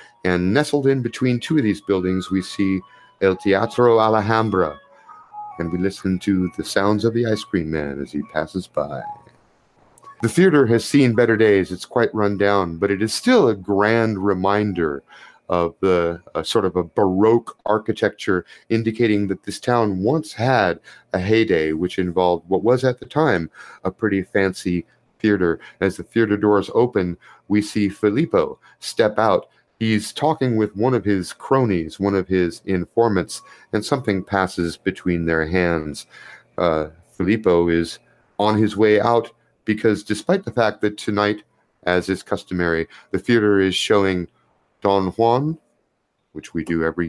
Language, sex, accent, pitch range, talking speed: English, male, American, 90-115 Hz, 160 wpm